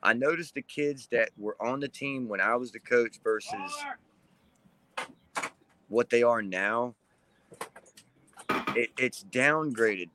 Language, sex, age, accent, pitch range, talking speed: English, male, 30-49, American, 110-145 Hz, 125 wpm